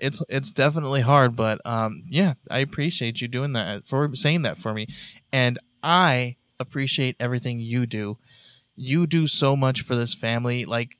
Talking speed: 170 wpm